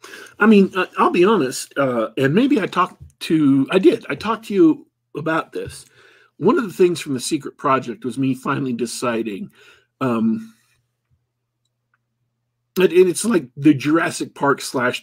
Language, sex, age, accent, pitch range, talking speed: English, male, 50-69, American, 120-155 Hz, 155 wpm